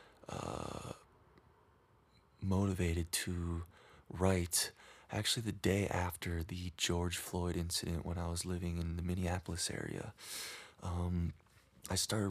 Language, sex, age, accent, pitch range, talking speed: English, male, 20-39, American, 85-100 Hz, 110 wpm